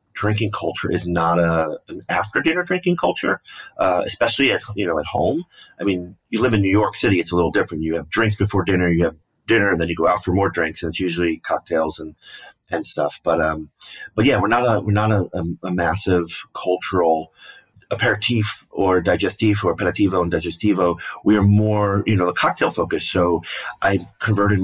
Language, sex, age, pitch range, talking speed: English, male, 30-49, 85-100 Hz, 205 wpm